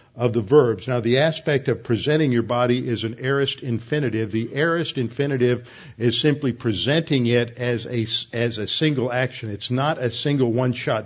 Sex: male